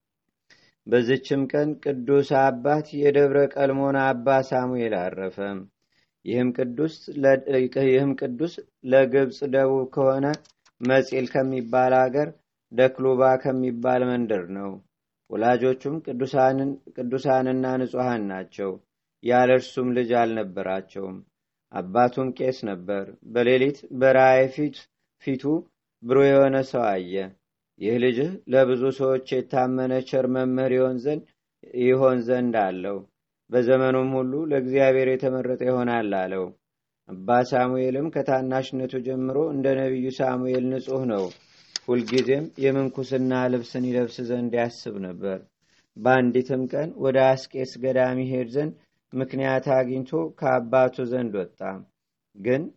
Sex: male